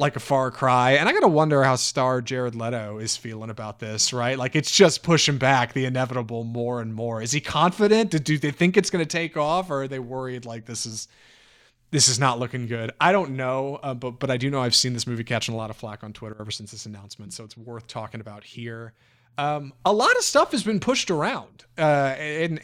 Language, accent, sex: English, American, male